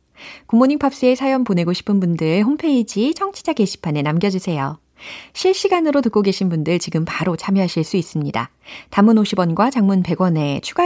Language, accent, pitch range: Korean, native, 170-275 Hz